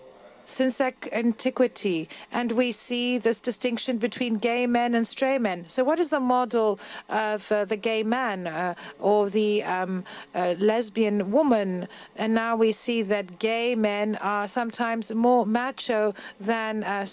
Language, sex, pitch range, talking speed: Greek, female, 215-255 Hz, 150 wpm